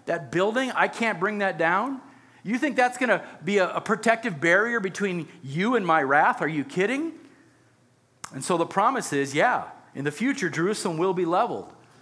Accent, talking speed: American, 185 wpm